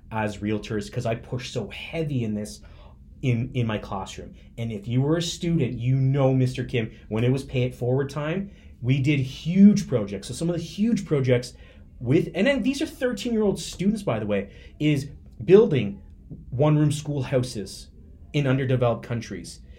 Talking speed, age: 175 wpm, 30-49